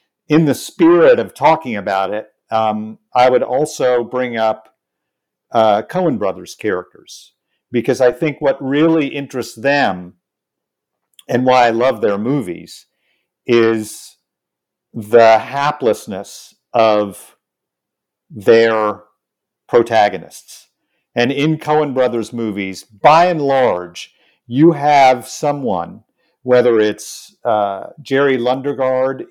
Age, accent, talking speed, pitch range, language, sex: 50-69, American, 105 wpm, 110-150 Hz, English, male